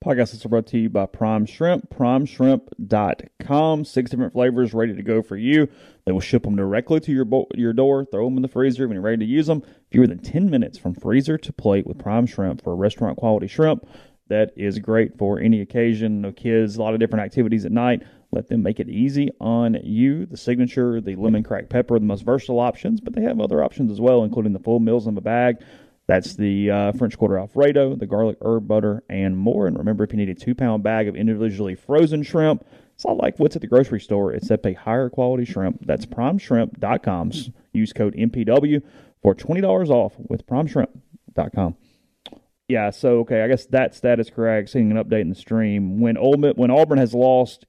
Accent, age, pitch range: American, 30-49, 105-130 Hz